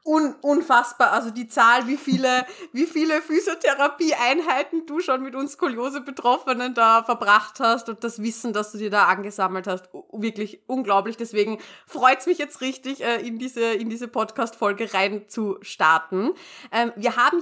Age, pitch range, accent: 30-49, 210-265 Hz, German